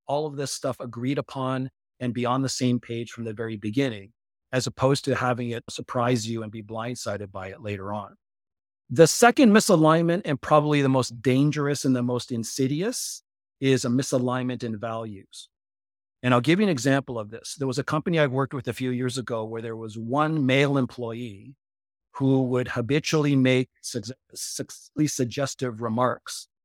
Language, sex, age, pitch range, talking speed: English, male, 40-59, 115-135 Hz, 180 wpm